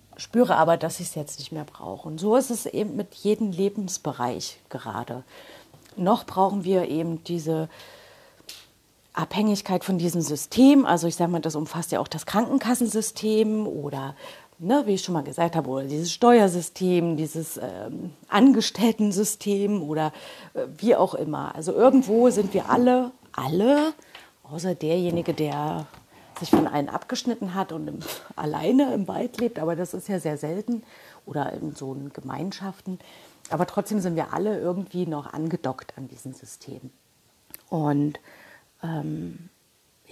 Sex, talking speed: female, 145 wpm